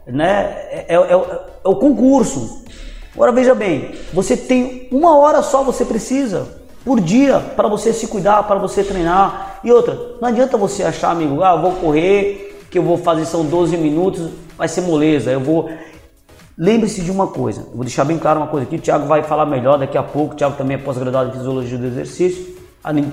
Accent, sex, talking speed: Brazilian, male, 195 wpm